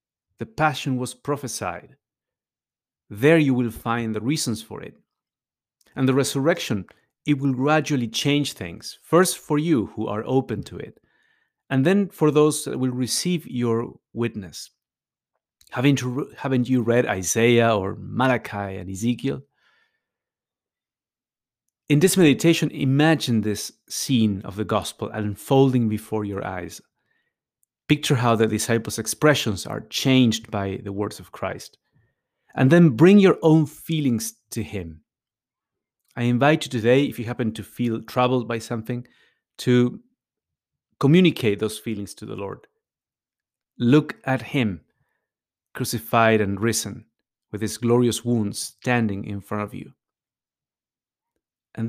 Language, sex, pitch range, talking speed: English, male, 110-140 Hz, 130 wpm